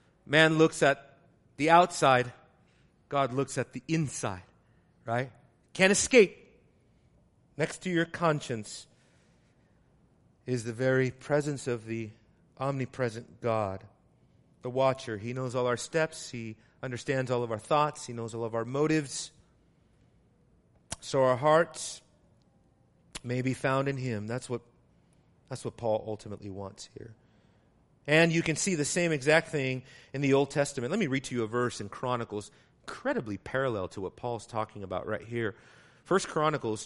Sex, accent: male, American